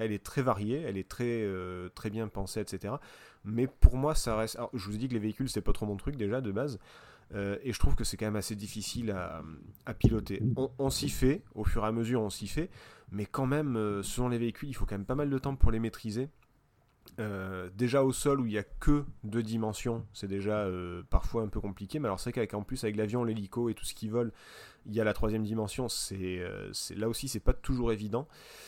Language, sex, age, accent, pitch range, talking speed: French, male, 30-49, French, 100-125 Hz, 260 wpm